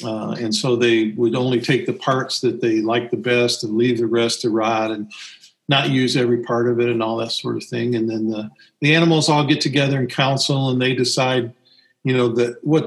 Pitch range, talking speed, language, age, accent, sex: 115-145 Hz, 235 wpm, English, 50-69, American, male